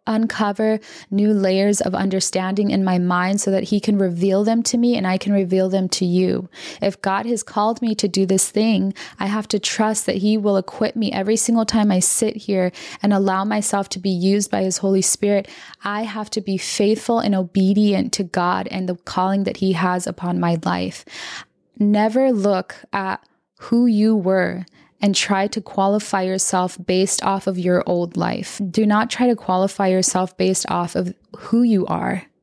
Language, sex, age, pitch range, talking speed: English, female, 10-29, 190-215 Hz, 190 wpm